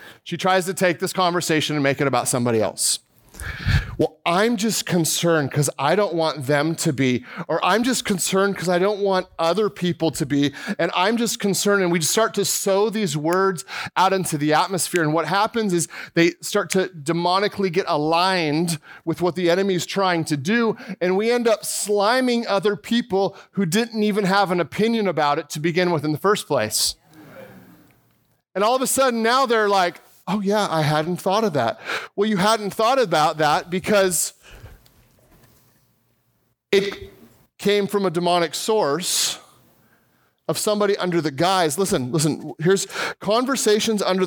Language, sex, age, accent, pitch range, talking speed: English, male, 30-49, American, 160-200 Hz, 175 wpm